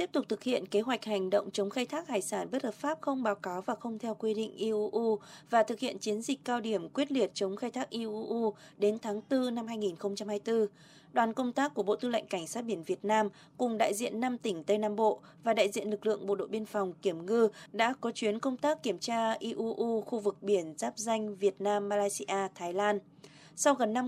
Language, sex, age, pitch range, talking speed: Vietnamese, female, 20-39, 200-235 Hz, 230 wpm